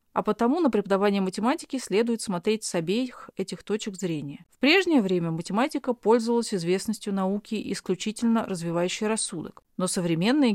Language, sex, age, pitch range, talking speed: Russian, female, 30-49, 175-230 Hz, 135 wpm